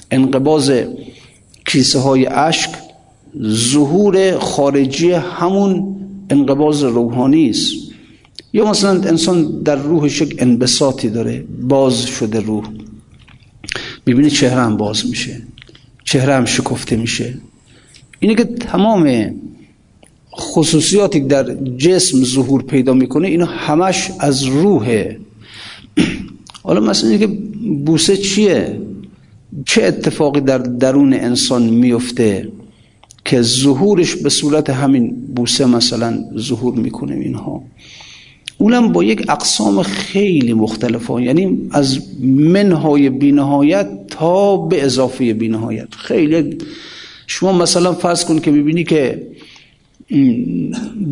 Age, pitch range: 50-69, 130-175 Hz